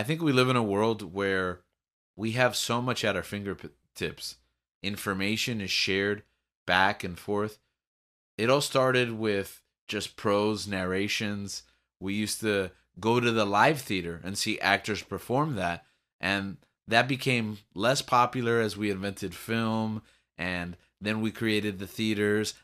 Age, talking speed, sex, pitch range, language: 30-49, 150 wpm, male, 95-120 Hz, English